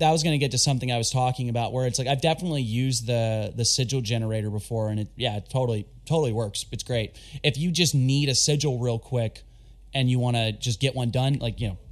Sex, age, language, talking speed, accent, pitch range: male, 20-39, English, 250 wpm, American, 115-135 Hz